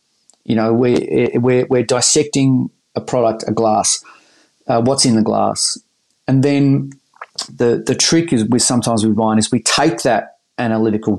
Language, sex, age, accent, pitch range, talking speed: English, male, 30-49, Australian, 110-145 Hz, 160 wpm